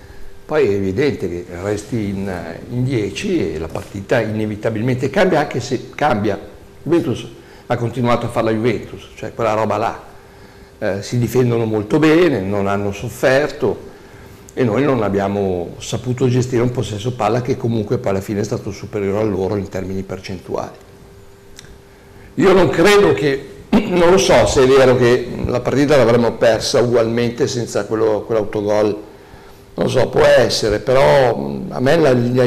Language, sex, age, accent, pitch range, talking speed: Italian, male, 60-79, native, 100-130 Hz, 155 wpm